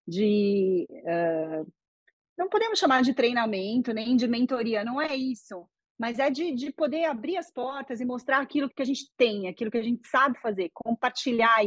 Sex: female